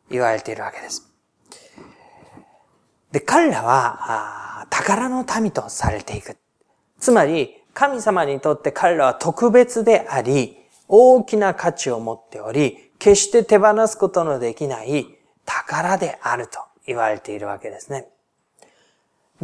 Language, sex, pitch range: Japanese, male, 140-210 Hz